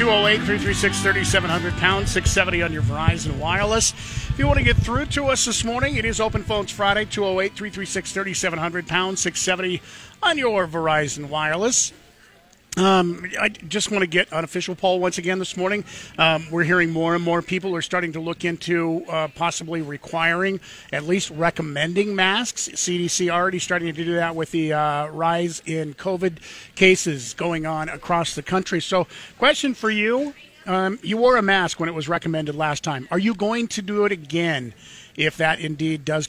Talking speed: 170 wpm